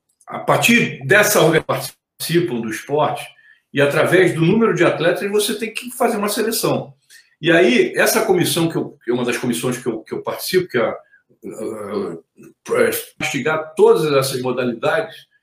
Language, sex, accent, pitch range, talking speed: Portuguese, male, Brazilian, 130-210 Hz, 155 wpm